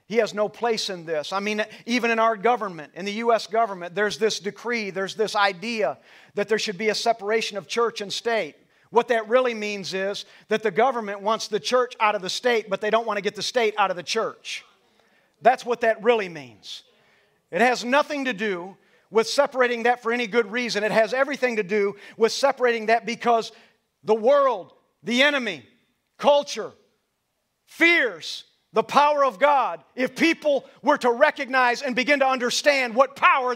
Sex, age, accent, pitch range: male, 40-59, American, 220-290 Hz